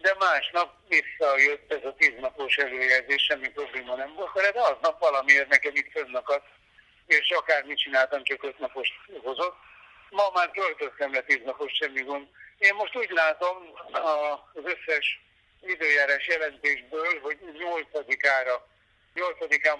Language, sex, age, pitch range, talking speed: Hungarian, male, 60-79, 140-170 Hz, 130 wpm